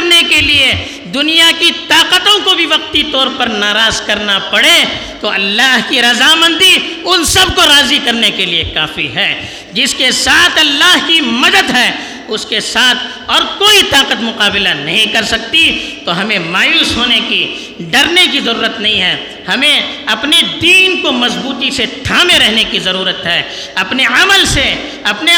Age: 50-69